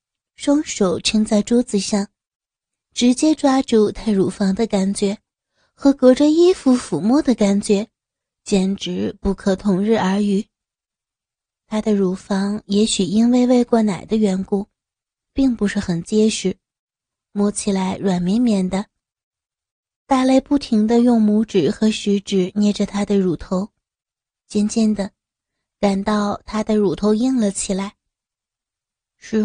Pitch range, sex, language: 195-225 Hz, female, Chinese